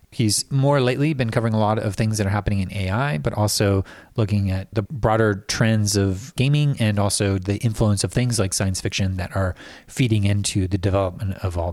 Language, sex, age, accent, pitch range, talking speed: English, male, 30-49, American, 100-120 Hz, 205 wpm